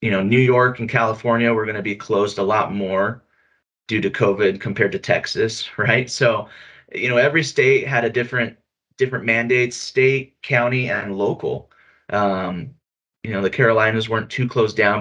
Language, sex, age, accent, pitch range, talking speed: English, male, 30-49, American, 100-130 Hz, 175 wpm